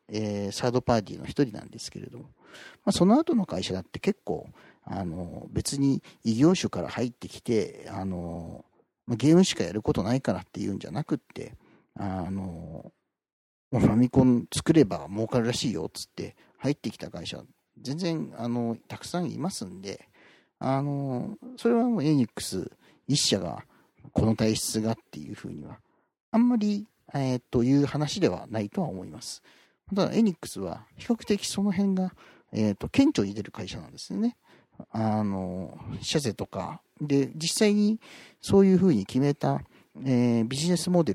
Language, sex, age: Japanese, male, 40-59